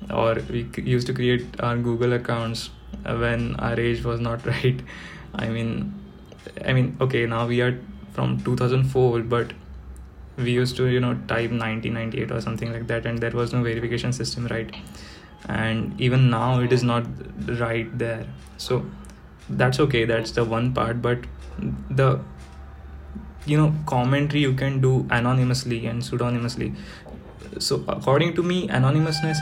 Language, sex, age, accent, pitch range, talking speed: English, male, 20-39, Indian, 115-135 Hz, 150 wpm